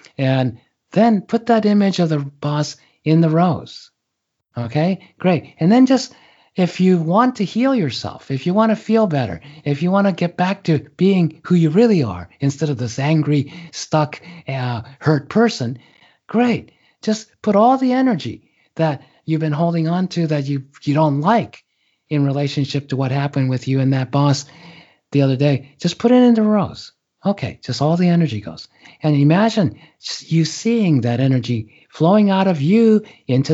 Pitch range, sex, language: 135-180 Hz, male, English